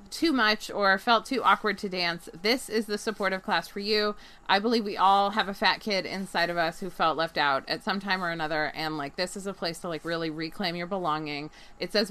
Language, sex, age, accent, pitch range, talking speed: English, female, 20-39, American, 180-235 Hz, 245 wpm